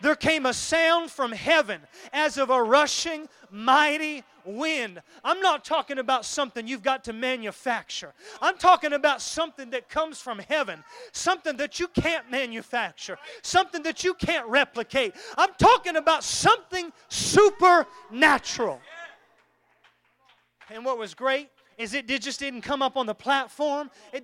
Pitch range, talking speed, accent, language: 270-360 Hz, 145 wpm, American, English